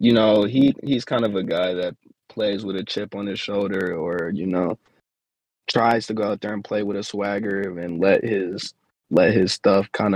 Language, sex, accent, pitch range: English, male, American, 90-105 Hz